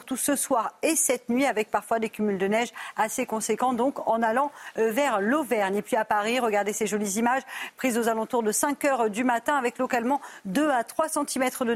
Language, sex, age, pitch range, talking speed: French, female, 50-69, 220-265 Hz, 215 wpm